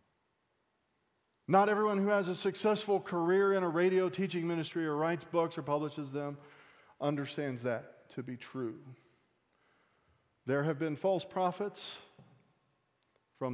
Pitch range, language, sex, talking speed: 120-170 Hz, English, male, 130 wpm